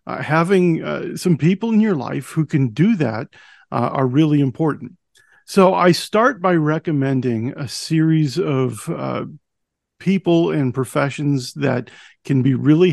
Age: 50-69